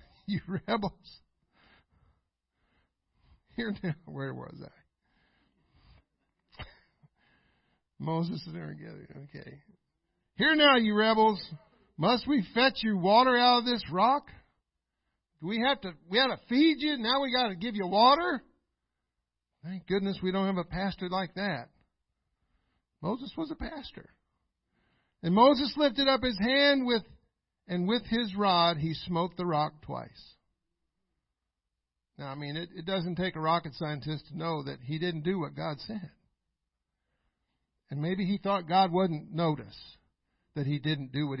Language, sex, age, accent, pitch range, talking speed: English, male, 50-69, American, 150-210 Hz, 145 wpm